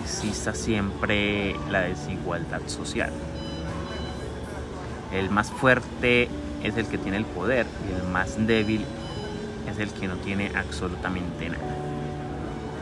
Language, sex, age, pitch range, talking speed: Spanish, male, 30-49, 80-110 Hz, 115 wpm